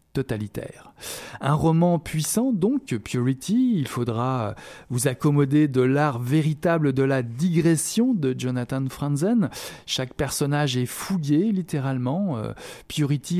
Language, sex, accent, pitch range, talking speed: French, male, French, 125-155 Hz, 110 wpm